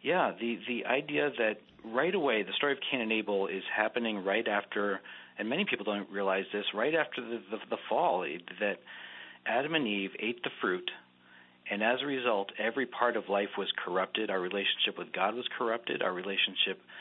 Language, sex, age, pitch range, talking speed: English, male, 40-59, 95-120 Hz, 190 wpm